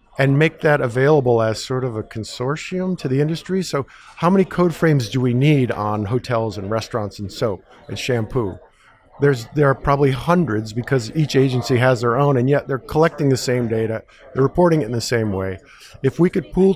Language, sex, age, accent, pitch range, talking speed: English, male, 50-69, American, 115-145 Hz, 205 wpm